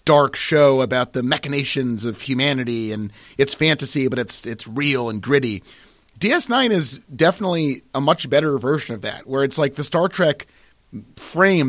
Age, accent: 30-49, American